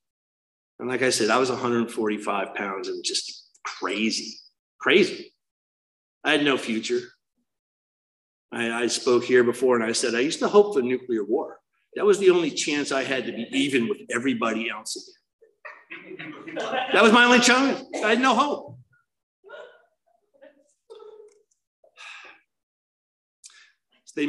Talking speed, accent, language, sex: 140 wpm, American, English, male